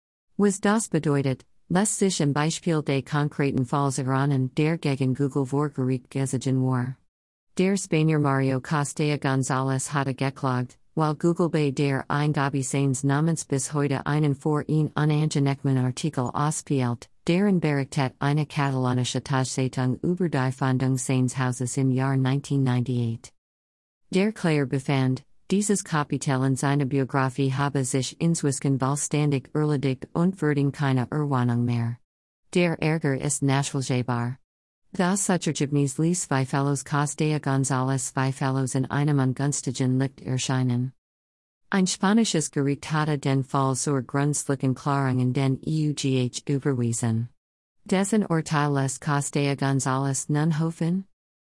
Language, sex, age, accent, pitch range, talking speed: German, female, 50-69, American, 130-150 Hz, 120 wpm